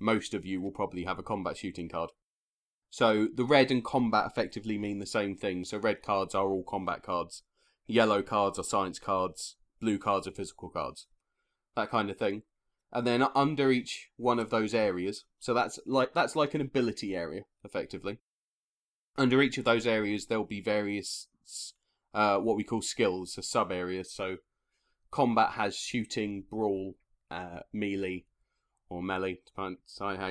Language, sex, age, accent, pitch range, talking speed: English, male, 20-39, British, 95-115 Hz, 170 wpm